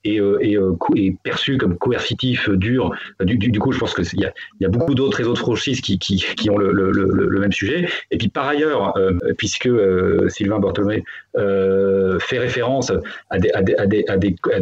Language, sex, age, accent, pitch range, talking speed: French, male, 30-49, French, 100-130 Hz, 210 wpm